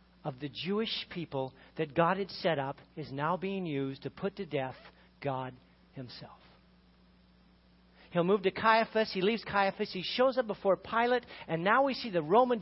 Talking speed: 175 wpm